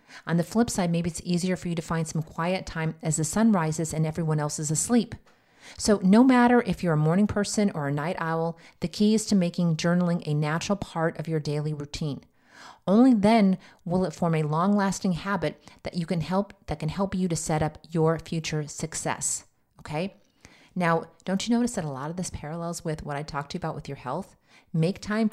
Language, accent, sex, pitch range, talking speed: English, American, female, 155-195 Hz, 225 wpm